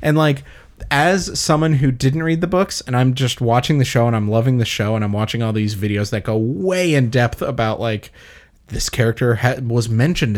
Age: 20-39